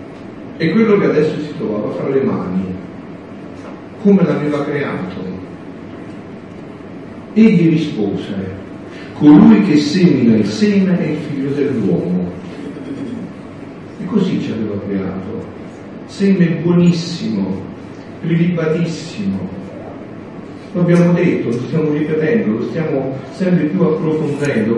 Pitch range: 110-170 Hz